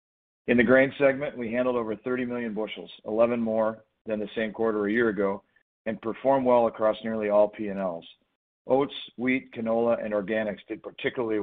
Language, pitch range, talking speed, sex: English, 105-120 Hz, 175 wpm, male